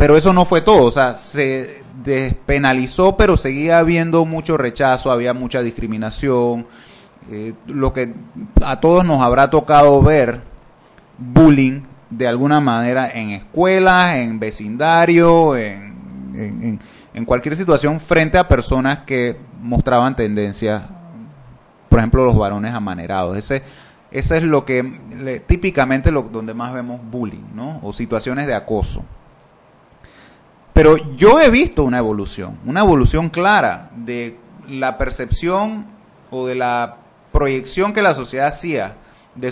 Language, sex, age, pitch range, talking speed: Spanish, male, 30-49, 120-160 Hz, 130 wpm